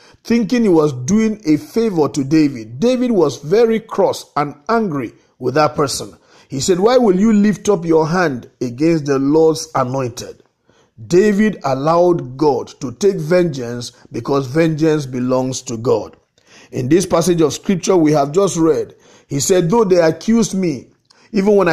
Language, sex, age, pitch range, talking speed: English, male, 50-69, 145-200 Hz, 160 wpm